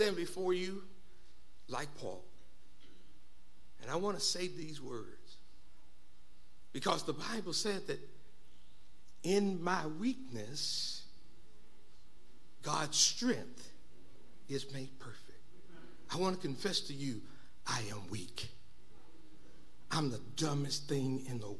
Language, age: English, 60-79